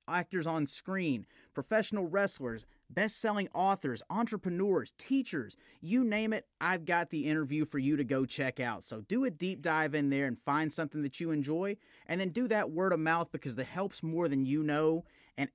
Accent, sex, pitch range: American, male, 145-200 Hz